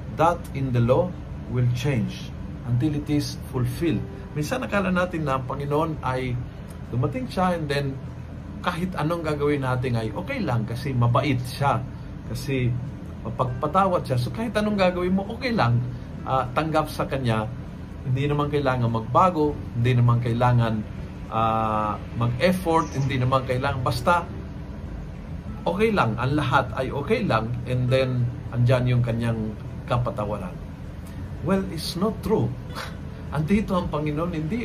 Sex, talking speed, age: male, 135 wpm, 50-69